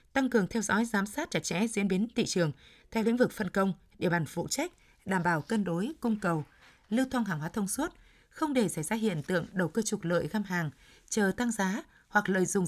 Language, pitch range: Vietnamese, 175-230 Hz